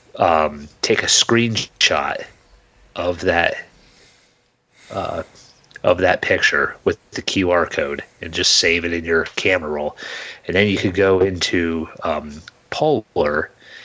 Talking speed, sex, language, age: 130 wpm, male, English, 30-49